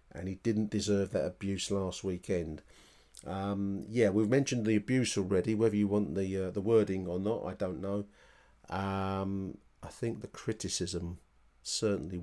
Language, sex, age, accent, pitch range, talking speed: English, male, 40-59, British, 95-110 Hz, 160 wpm